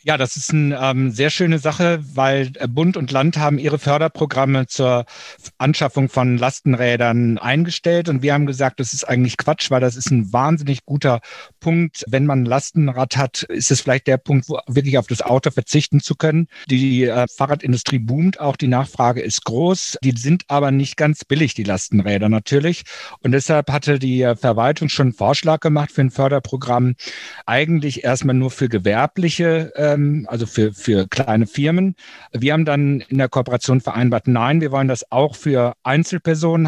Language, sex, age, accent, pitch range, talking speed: German, male, 60-79, German, 125-150 Hz, 175 wpm